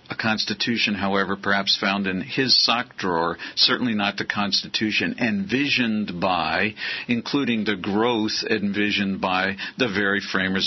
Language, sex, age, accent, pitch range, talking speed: English, male, 50-69, American, 105-150 Hz, 130 wpm